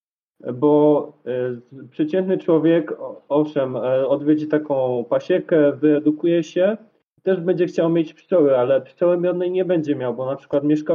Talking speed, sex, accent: 130 wpm, male, native